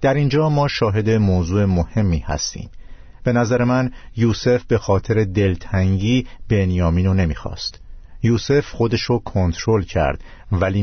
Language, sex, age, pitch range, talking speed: Persian, male, 50-69, 90-125 Hz, 120 wpm